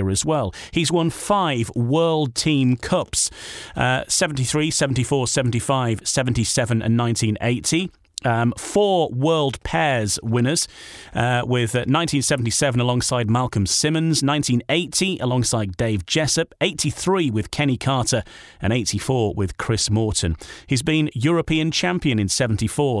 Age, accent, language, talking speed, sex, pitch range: 30-49, British, English, 120 wpm, male, 115-160 Hz